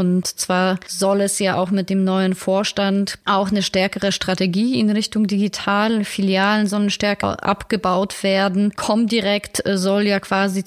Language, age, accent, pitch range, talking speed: German, 30-49, German, 190-205 Hz, 150 wpm